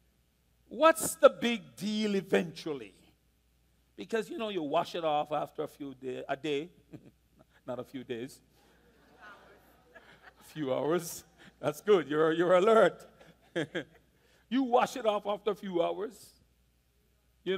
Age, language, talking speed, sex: 50-69, English, 135 wpm, male